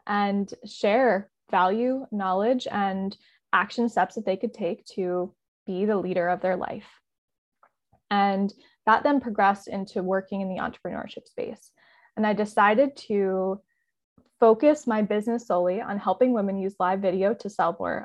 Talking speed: 150 wpm